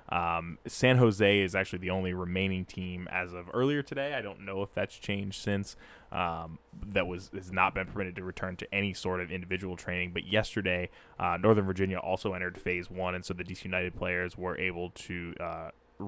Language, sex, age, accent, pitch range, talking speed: English, male, 20-39, American, 90-105 Hz, 200 wpm